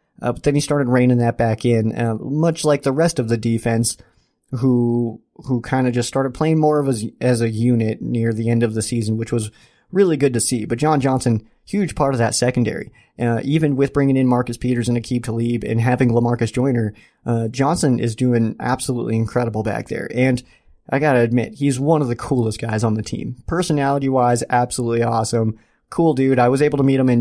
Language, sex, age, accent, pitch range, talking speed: English, male, 30-49, American, 115-135 Hz, 215 wpm